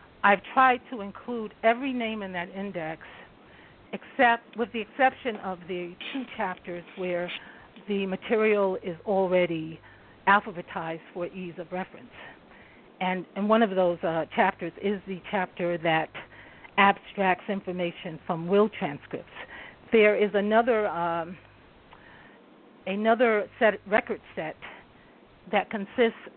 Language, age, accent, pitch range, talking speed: English, 50-69, American, 180-215 Hz, 120 wpm